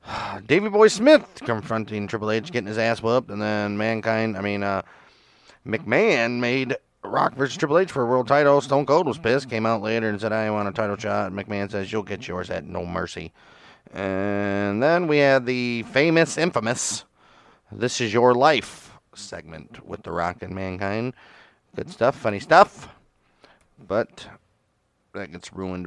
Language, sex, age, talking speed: English, male, 30-49, 170 wpm